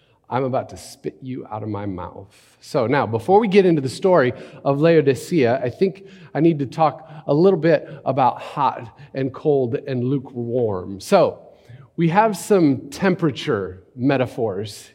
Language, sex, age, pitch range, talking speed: English, male, 40-59, 135-180 Hz, 160 wpm